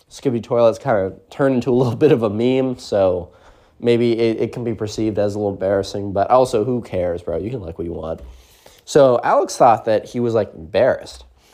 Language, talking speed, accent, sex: English, 220 wpm, American, male